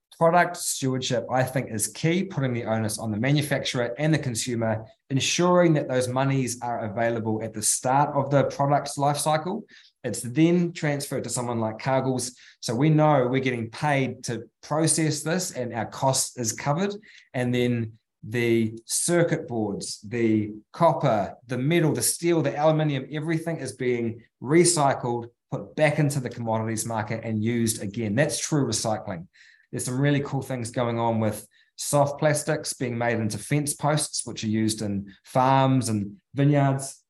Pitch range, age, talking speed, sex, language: 115-145 Hz, 20-39, 165 wpm, male, English